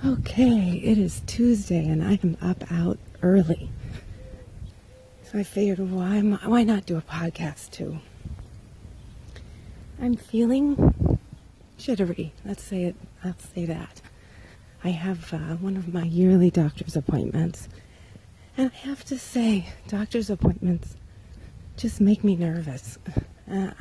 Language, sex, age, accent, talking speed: English, female, 40-59, American, 125 wpm